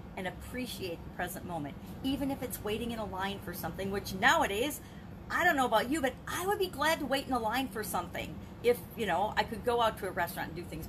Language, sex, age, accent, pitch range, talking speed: English, female, 40-59, American, 195-280 Hz, 255 wpm